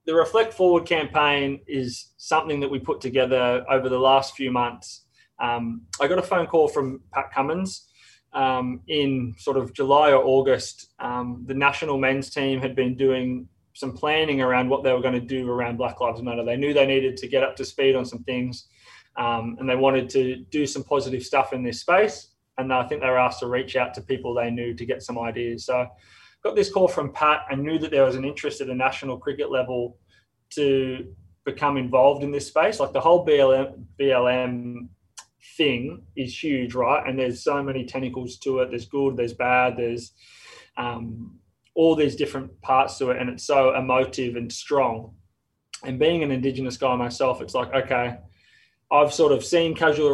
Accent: Australian